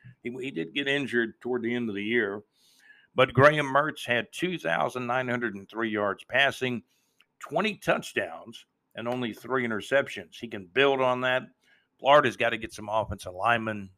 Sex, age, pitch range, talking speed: male, 50-69, 105-125 Hz, 150 wpm